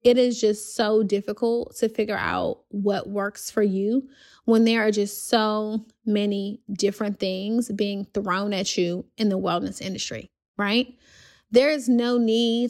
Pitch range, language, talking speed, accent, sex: 205-245 Hz, English, 155 wpm, American, female